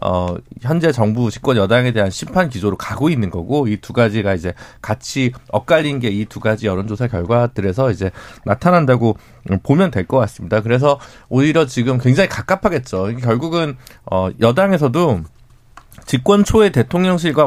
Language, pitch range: Korean, 110-160 Hz